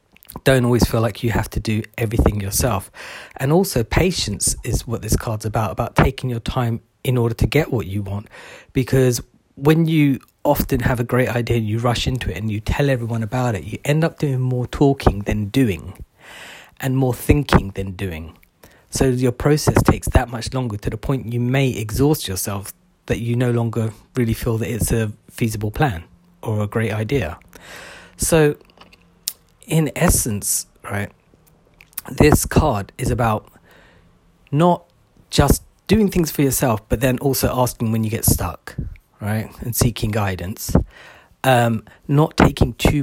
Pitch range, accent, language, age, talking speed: 105-130 Hz, British, English, 40-59, 165 wpm